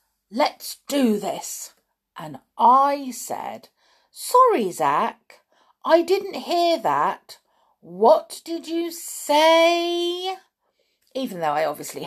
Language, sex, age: English, female, 50-69